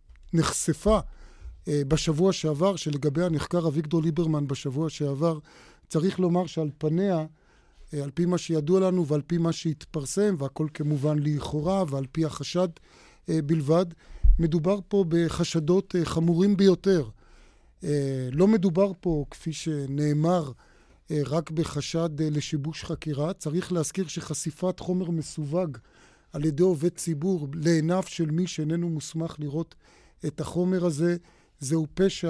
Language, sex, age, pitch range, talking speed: Hebrew, male, 30-49, 150-175 Hz, 115 wpm